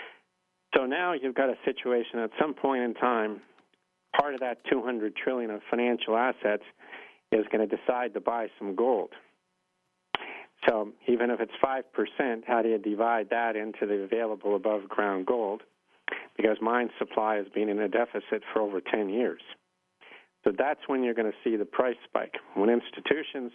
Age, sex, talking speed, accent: 50-69, male, 170 wpm, American